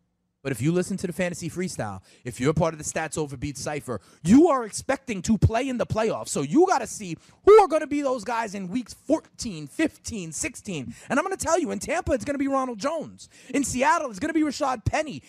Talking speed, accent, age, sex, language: 245 wpm, American, 30-49, male, English